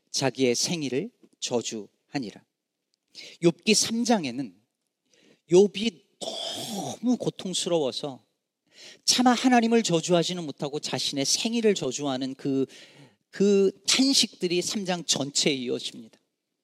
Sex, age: male, 40-59